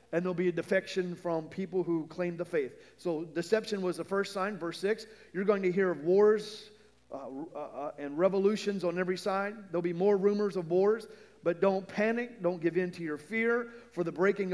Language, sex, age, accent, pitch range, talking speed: English, male, 40-59, American, 175-215 Hz, 210 wpm